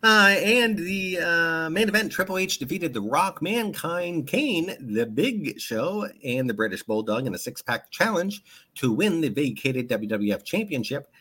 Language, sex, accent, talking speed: English, male, American, 160 wpm